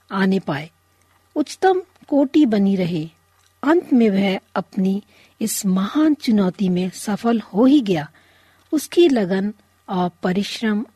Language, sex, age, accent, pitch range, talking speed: Hindi, female, 50-69, native, 185-255 Hz, 120 wpm